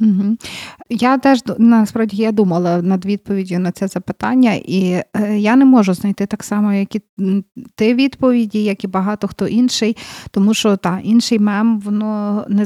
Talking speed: 160 wpm